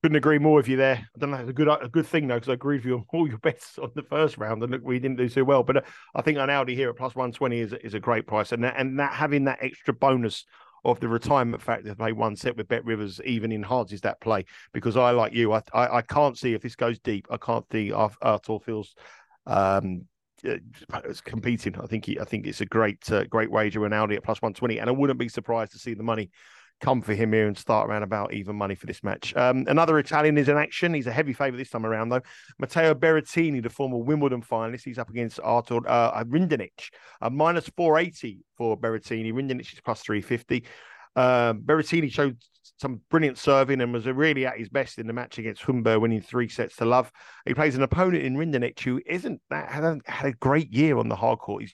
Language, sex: English, male